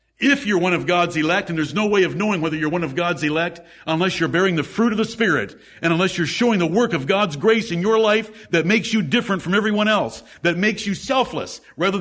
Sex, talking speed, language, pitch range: male, 250 wpm, English, 170-225 Hz